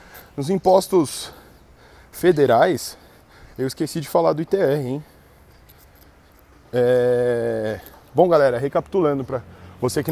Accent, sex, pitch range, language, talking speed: Brazilian, male, 120-170 Hz, Portuguese, 100 wpm